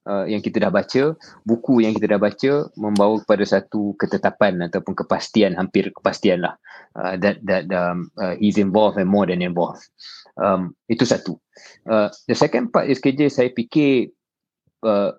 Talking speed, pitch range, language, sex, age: 160 wpm, 100-130 Hz, Malay, male, 20-39